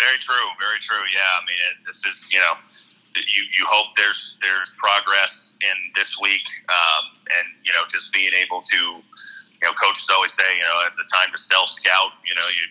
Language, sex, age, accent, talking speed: English, male, 30-49, American, 210 wpm